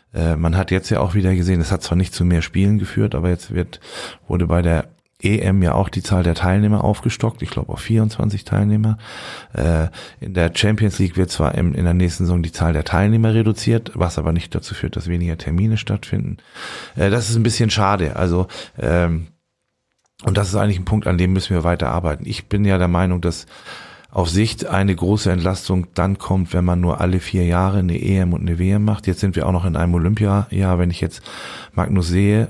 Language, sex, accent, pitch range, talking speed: German, male, German, 85-105 Hz, 210 wpm